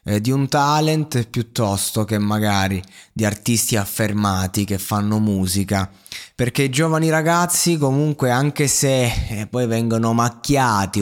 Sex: male